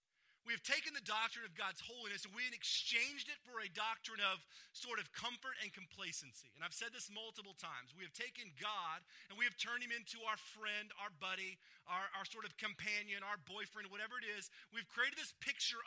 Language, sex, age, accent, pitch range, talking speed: English, male, 30-49, American, 195-235 Hz, 210 wpm